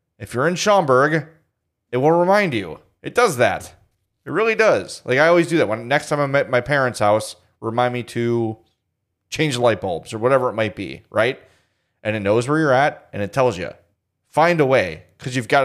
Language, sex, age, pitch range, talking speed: English, male, 30-49, 110-140 Hz, 215 wpm